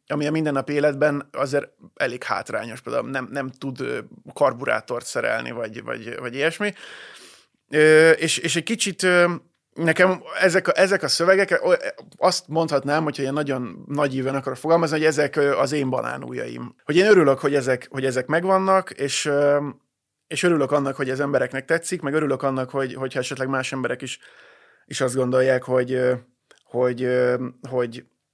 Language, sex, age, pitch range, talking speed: Hungarian, male, 20-39, 130-155 Hz, 155 wpm